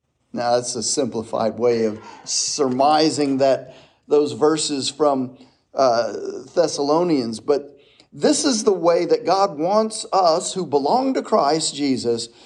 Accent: American